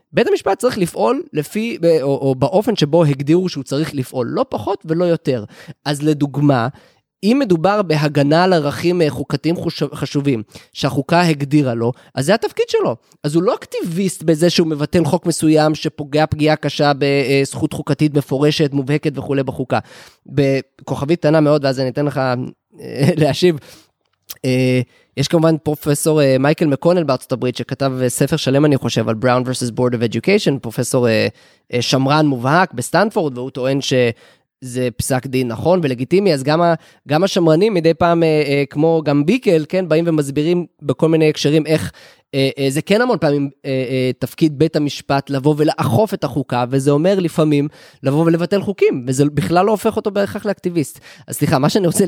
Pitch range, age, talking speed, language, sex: 135-165 Hz, 20-39, 150 wpm, Hebrew, male